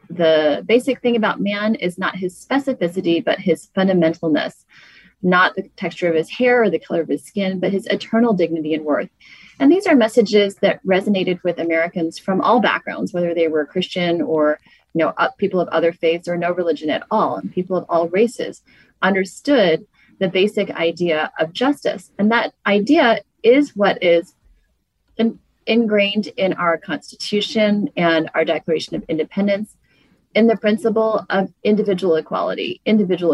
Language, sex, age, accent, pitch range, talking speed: English, female, 30-49, American, 165-215 Hz, 160 wpm